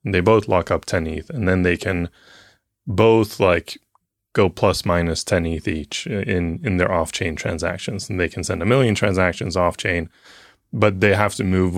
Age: 20-39